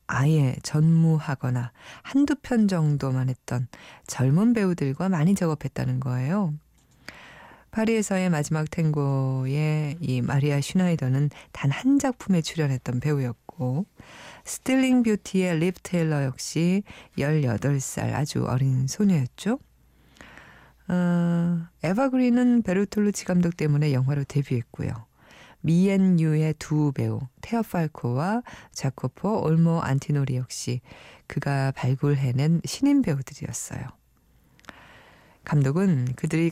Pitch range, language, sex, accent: 135-180 Hz, Korean, female, native